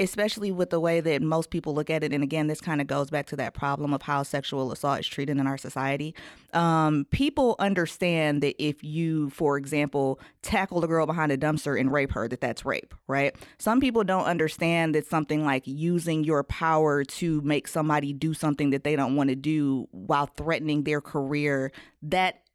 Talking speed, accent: 200 wpm, American